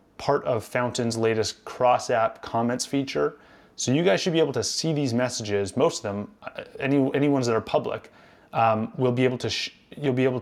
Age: 30-49